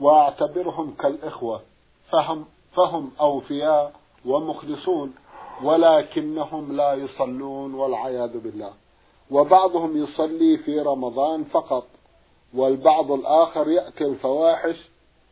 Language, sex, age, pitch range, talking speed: Arabic, male, 50-69, 140-165 Hz, 75 wpm